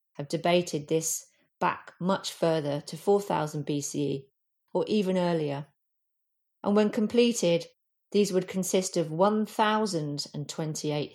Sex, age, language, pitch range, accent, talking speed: female, 40-59, English, 155-190 Hz, British, 110 wpm